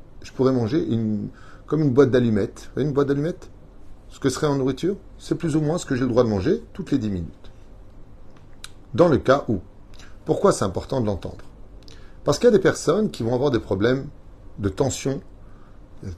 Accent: French